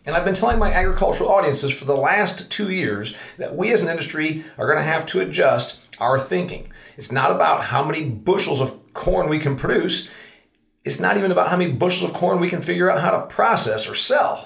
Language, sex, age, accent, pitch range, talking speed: English, male, 40-59, American, 125-155 Hz, 225 wpm